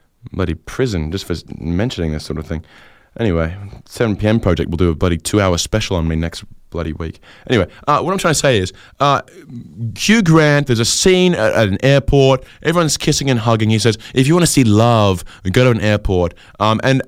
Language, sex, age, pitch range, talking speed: English, male, 20-39, 90-115 Hz, 215 wpm